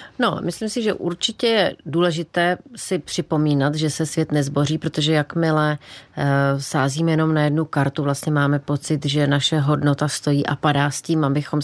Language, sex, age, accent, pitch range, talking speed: Czech, female, 30-49, native, 145-165 Hz, 165 wpm